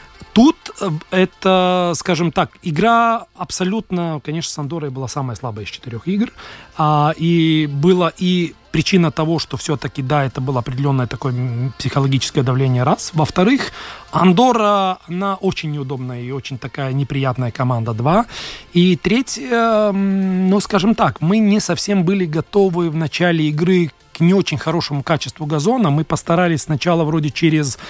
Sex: male